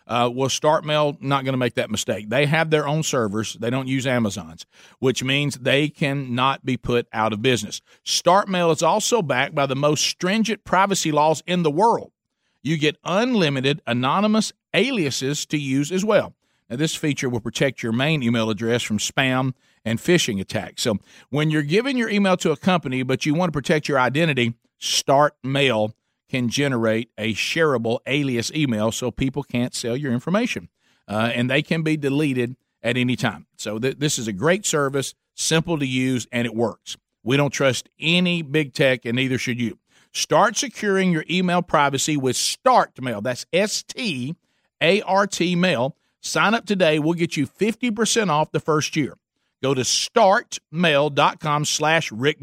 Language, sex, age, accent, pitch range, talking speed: English, male, 50-69, American, 125-160 Hz, 170 wpm